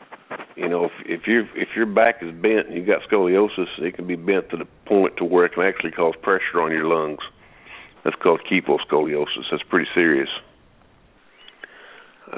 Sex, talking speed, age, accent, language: male, 185 wpm, 50-69, American, English